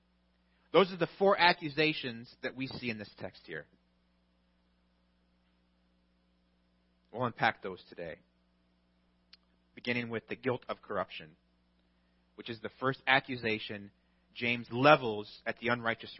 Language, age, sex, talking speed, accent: English, 30-49, male, 120 wpm, American